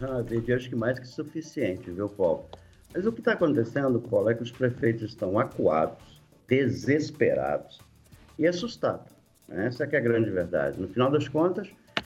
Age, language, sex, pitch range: 50-69, Portuguese, male, 110-160 Hz